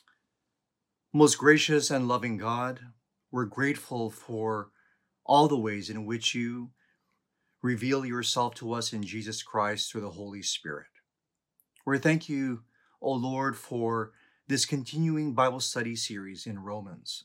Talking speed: 130 wpm